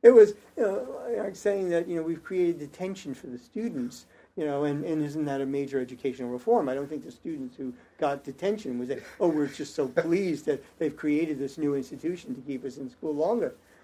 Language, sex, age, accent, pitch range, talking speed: English, male, 50-69, American, 120-155 Hz, 215 wpm